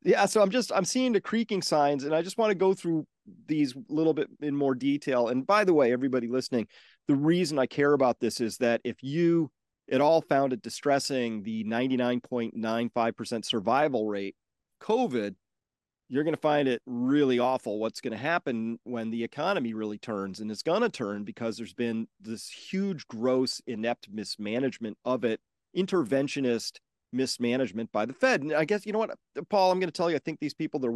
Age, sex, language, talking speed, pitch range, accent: 40-59, male, English, 200 wpm, 120-150 Hz, American